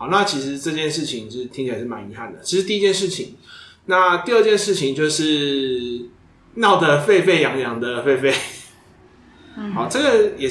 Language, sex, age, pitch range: Chinese, male, 20-39, 135-185 Hz